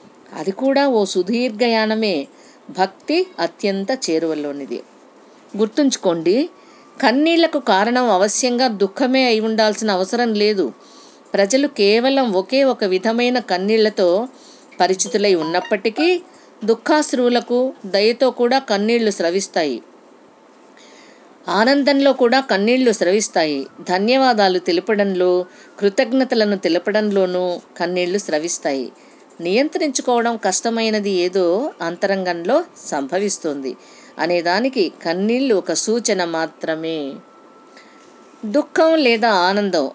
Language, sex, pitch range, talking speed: Telugu, female, 185-255 Hz, 80 wpm